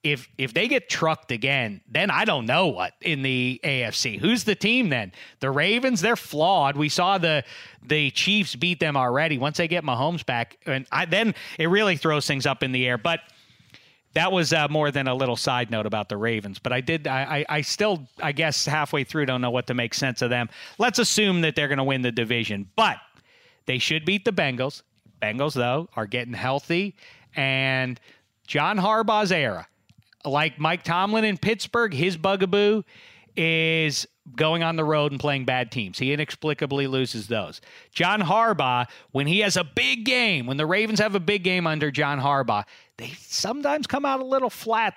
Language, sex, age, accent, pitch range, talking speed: English, male, 40-59, American, 130-175 Hz, 195 wpm